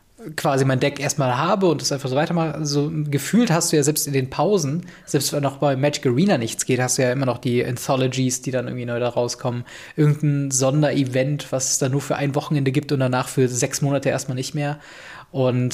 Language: German